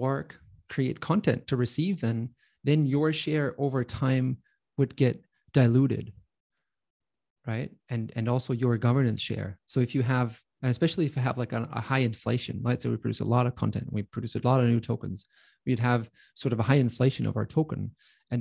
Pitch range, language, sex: 115-140 Hz, Chinese, male